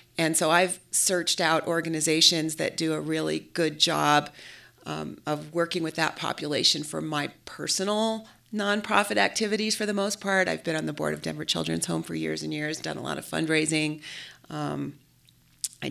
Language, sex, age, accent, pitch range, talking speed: English, female, 40-59, American, 155-180 Hz, 175 wpm